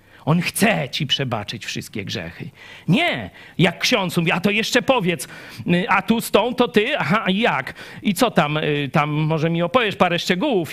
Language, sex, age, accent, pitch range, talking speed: Polish, male, 40-59, native, 110-180 Hz, 180 wpm